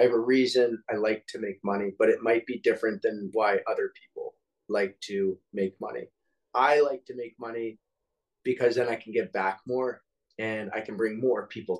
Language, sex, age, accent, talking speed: English, male, 20-39, American, 205 wpm